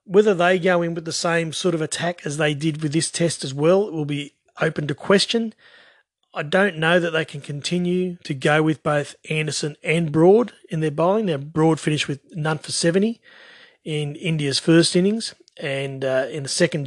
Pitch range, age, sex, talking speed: 150-185 Hz, 30-49, male, 205 wpm